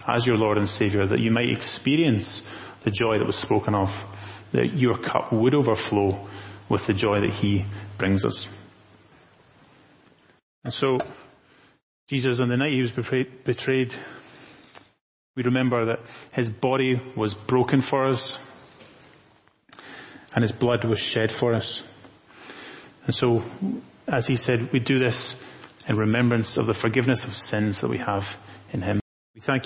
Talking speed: 150 wpm